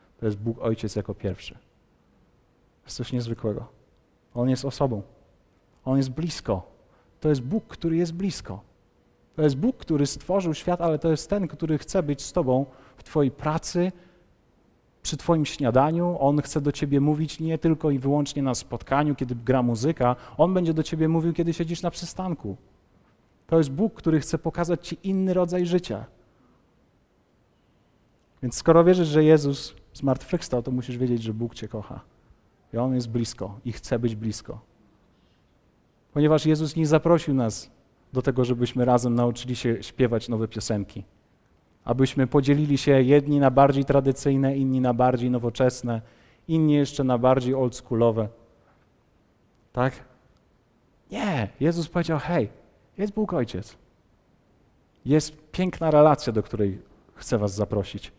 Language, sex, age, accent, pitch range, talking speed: Polish, male, 40-59, native, 115-155 Hz, 150 wpm